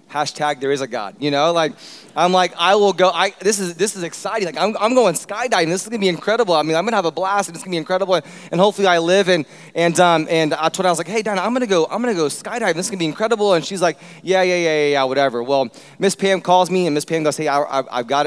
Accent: American